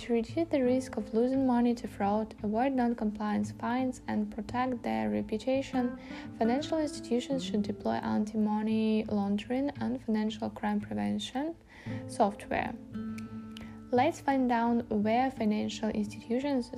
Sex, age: female, 10-29